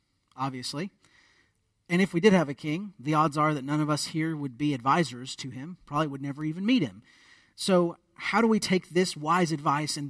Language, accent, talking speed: English, American, 215 wpm